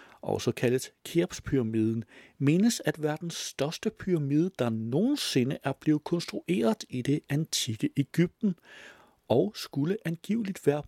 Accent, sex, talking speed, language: native, male, 125 wpm, Danish